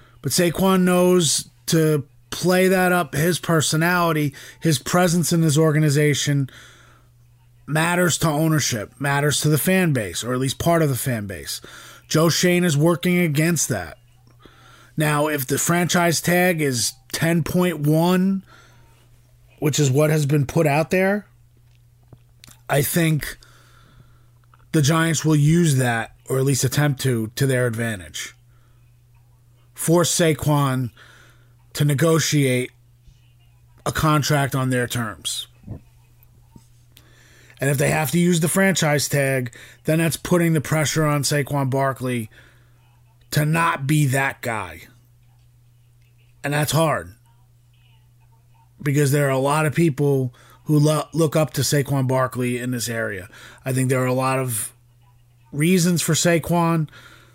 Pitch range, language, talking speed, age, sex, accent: 120-155 Hz, English, 130 wpm, 30-49, male, American